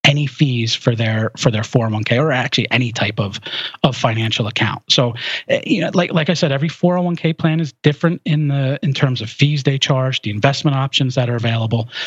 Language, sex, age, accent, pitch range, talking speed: English, male, 40-59, American, 120-155 Hz, 205 wpm